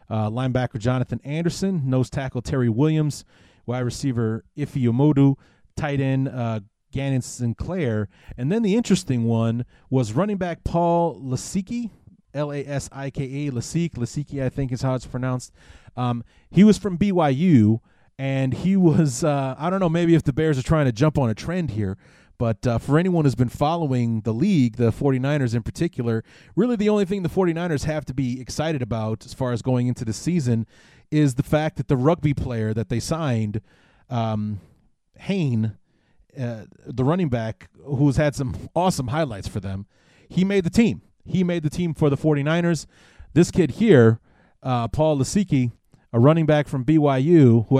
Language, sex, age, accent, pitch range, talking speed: English, male, 30-49, American, 120-155 Hz, 175 wpm